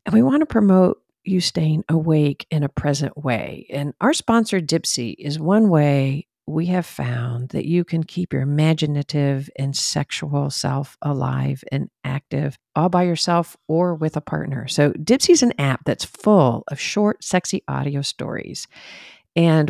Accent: American